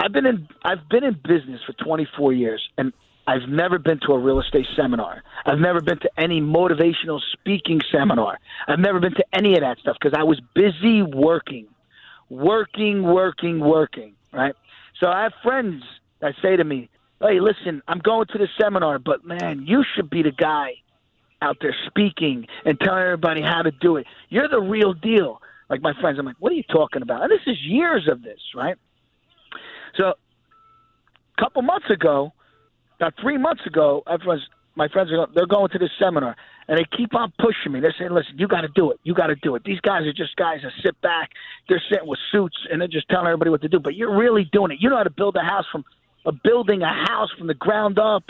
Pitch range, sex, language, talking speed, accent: 150-205 Hz, male, English, 215 wpm, American